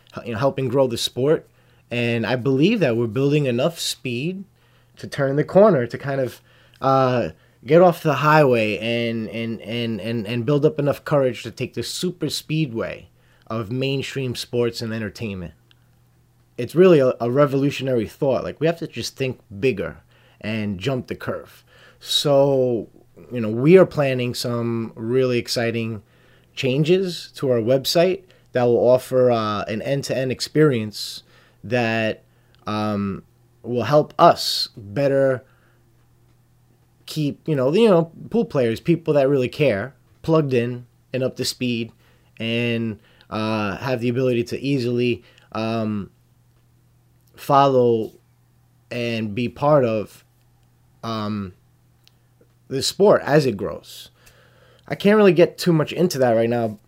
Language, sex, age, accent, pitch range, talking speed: English, male, 30-49, American, 115-135 Hz, 140 wpm